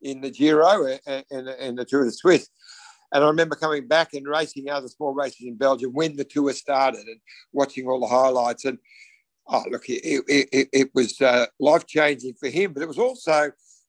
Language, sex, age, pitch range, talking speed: English, male, 60-79, 125-145 Hz, 195 wpm